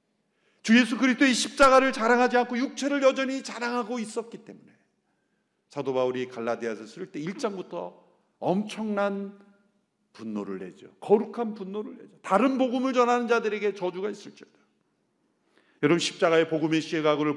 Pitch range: 135-220 Hz